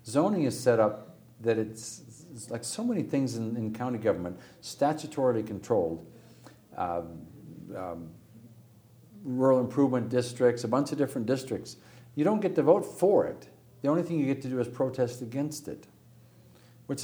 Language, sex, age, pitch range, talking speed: English, male, 60-79, 95-125 Hz, 160 wpm